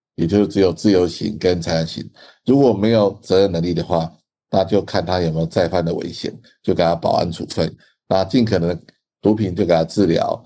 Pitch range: 90-105 Hz